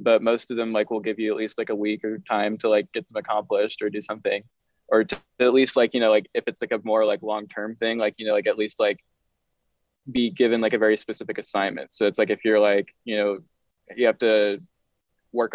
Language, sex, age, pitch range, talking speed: English, male, 20-39, 105-115 Hz, 250 wpm